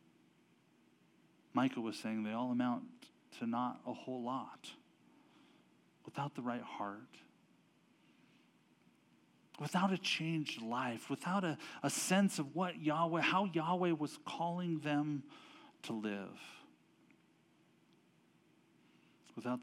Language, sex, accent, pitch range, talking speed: English, male, American, 115-155 Hz, 105 wpm